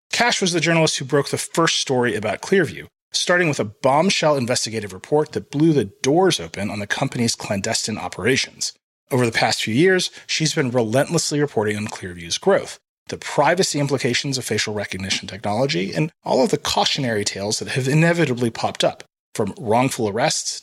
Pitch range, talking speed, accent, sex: 110-160 Hz, 175 wpm, American, male